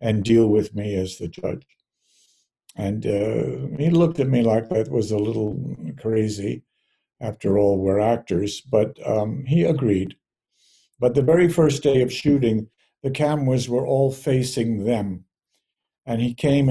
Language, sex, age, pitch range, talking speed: English, male, 60-79, 110-135 Hz, 155 wpm